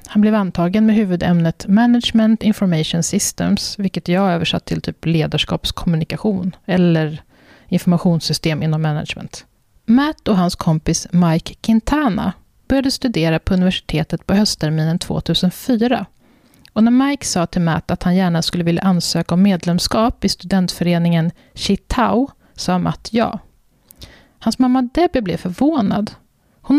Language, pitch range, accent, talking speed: Swedish, 175-225 Hz, native, 130 wpm